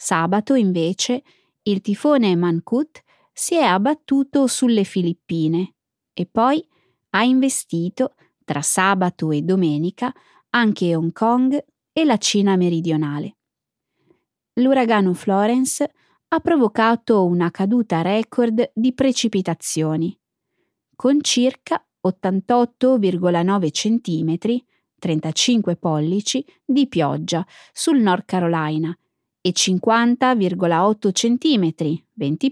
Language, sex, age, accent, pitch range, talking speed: Italian, female, 20-39, native, 175-255 Hz, 90 wpm